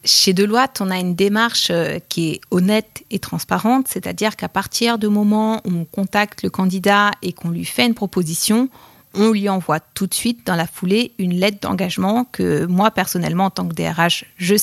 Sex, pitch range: female, 180-215 Hz